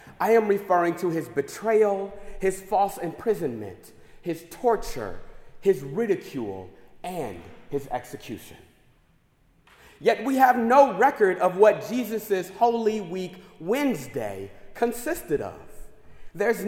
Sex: male